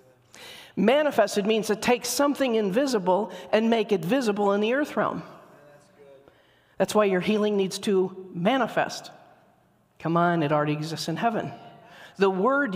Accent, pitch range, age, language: American, 195-260 Hz, 40-59, English